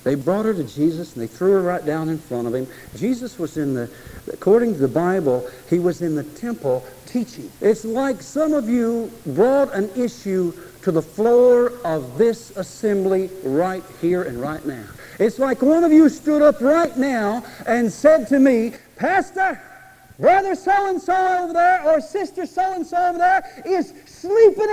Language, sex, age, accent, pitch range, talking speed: English, male, 60-79, American, 175-275 Hz, 175 wpm